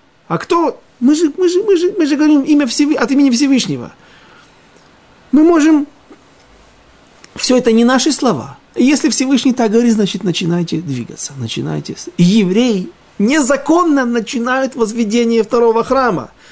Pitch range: 145-240 Hz